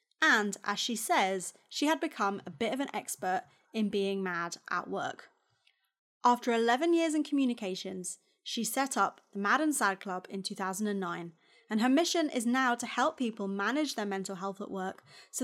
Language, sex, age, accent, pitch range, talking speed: English, female, 20-39, British, 205-300 Hz, 185 wpm